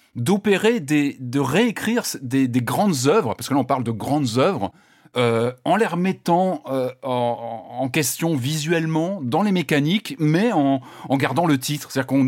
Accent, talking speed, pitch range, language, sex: French, 170 wpm, 120-160 Hz, French, male